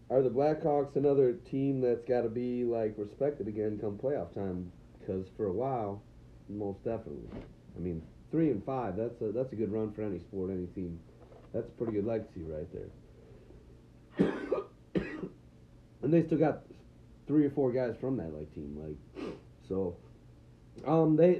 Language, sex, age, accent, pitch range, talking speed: English, male, 40-59, American, 100-140 Hz, 170 wpm